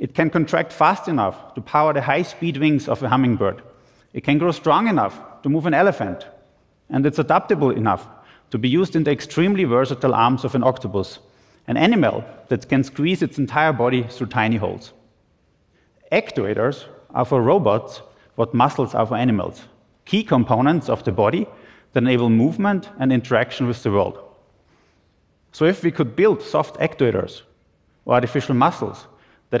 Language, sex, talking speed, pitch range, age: Arabic, male, 165 wpm, 115-150 Hz, 30-49